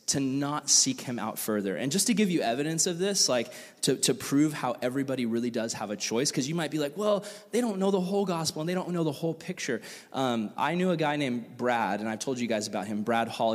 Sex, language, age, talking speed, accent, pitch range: male, English, 20-39, 265 wpm, American, 120-165 Hz